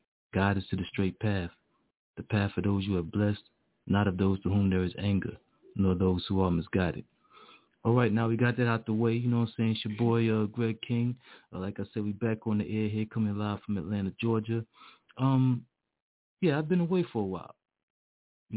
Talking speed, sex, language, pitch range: 225 wpm, male, English, 95-110 Hz